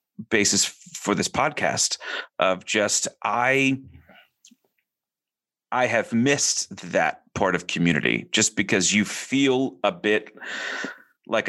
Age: 30-49